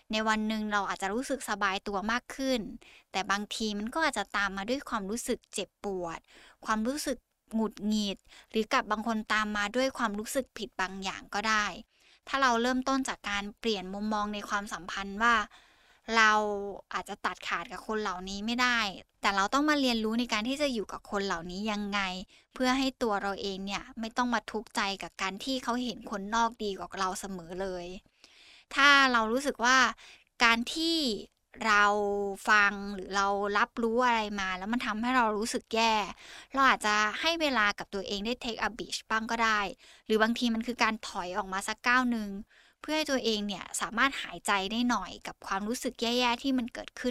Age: 10-29